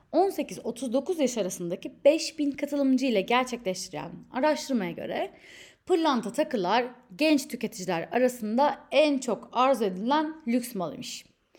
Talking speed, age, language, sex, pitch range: 105 wpm, 30-49, Turkish, female, 200-285 Hz